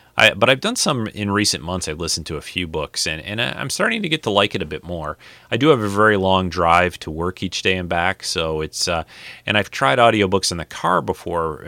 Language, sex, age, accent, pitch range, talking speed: English, male, 30-49, American, 80-100 Hz, 255 wpm